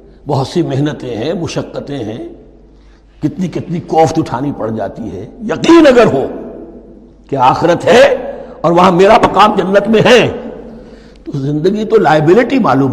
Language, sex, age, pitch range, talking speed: Urdu, male, 60-79, 130-220 Hz, 145 wpm